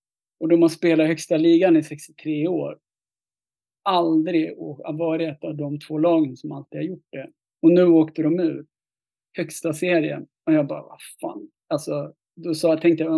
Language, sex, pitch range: English, male, 150-175 Hz